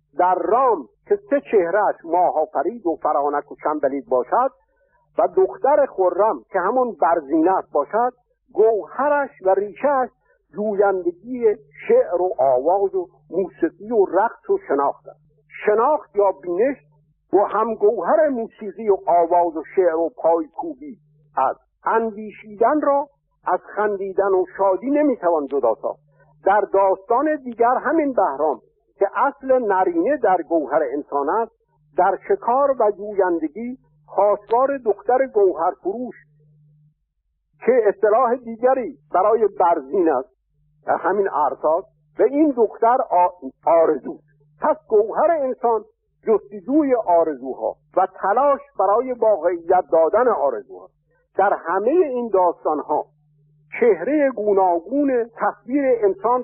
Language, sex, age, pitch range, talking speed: Persian, male, 60-79, 165-260 Hz, 115 wpm